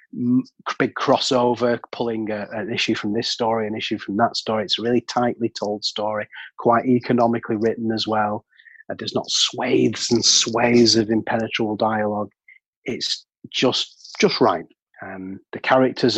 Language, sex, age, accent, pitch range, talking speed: English, male, 30-49, British, 100-115 Hz, 150 wpm